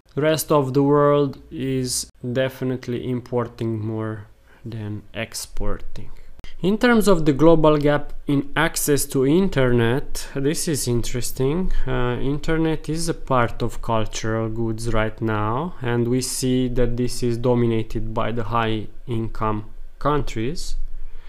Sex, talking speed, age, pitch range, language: male, 125 wpm, 20-39, 115-135 Hz, English